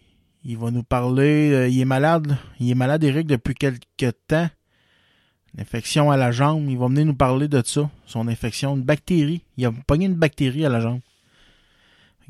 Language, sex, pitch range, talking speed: French, male, 120-150 Hz, 185 wpm